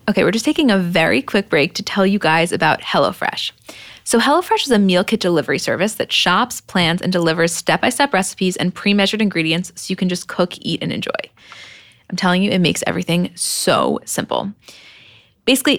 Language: English